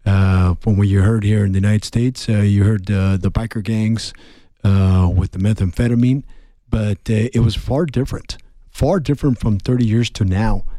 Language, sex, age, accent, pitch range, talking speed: English, male, 50-69, American, 100-115 Hz, 190 wpm